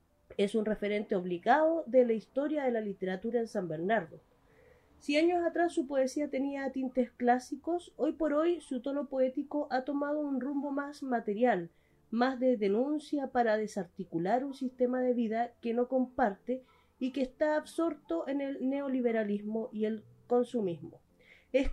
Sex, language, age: female, Spanish, 30-49